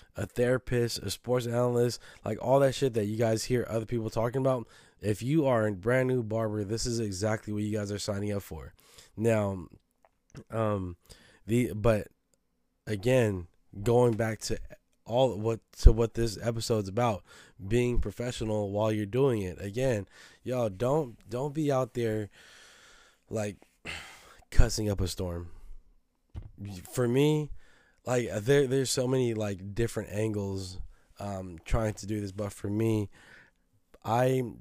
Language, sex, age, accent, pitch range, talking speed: English, male, 20-39, American, 100-120 Hz, 150 wpm